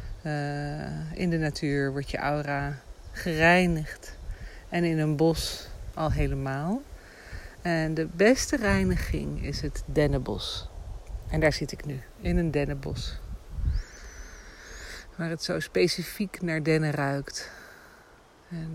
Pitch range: 135-170 Hz